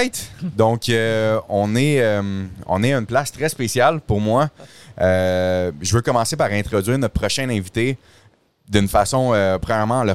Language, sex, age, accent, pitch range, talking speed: French, male, 30-49, Canadian, 95-120 Hz, 160 wpm